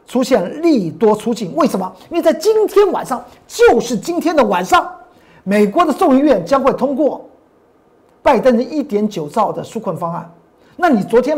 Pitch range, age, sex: 205-315 Hz, 50-69, male